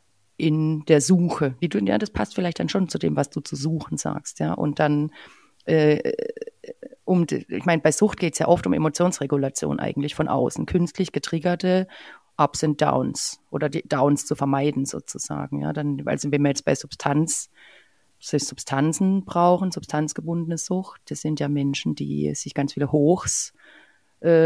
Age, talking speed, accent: 40-59, 170 wpm, German